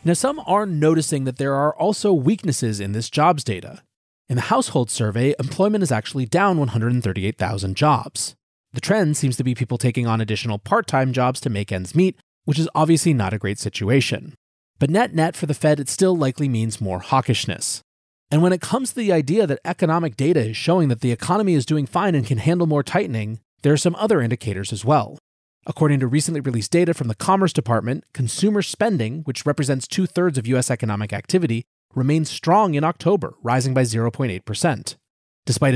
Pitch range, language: 115-165 Hz, English